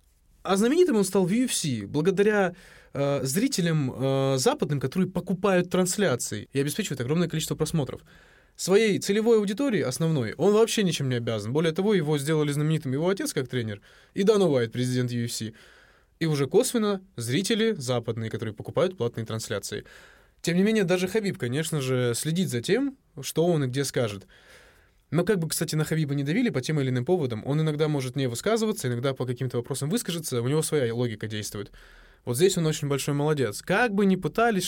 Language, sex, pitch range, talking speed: Russian, male, 125-185 Hz, 180 wpm